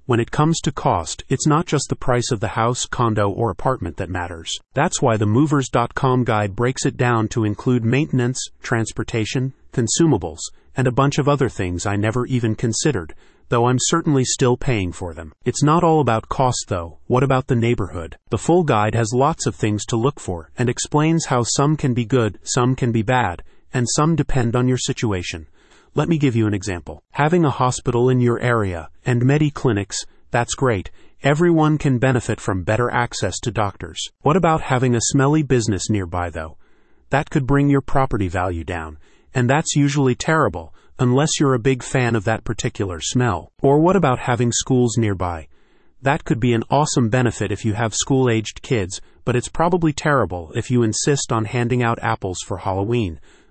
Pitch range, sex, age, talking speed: 110-135 Hz, male, 30-49, 190 wpm